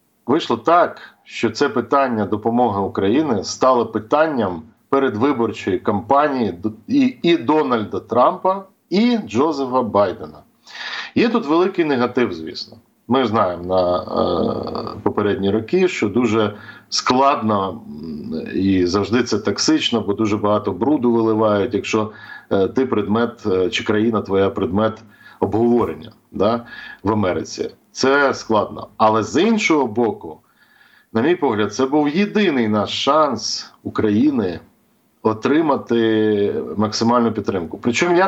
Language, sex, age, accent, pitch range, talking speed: Ukrainian, male, 40-59, native, 105-140 Hz, 110 wpm